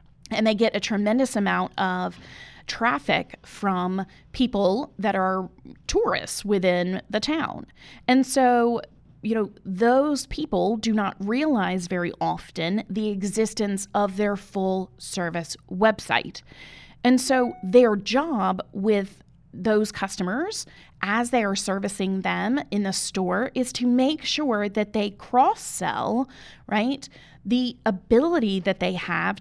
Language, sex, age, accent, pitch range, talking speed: English, female, 20-39, American, 190-235 Hz, 130 wpm